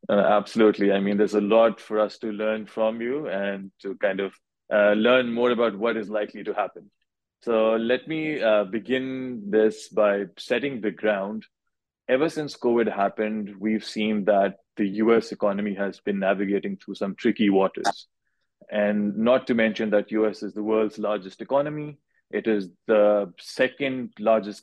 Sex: male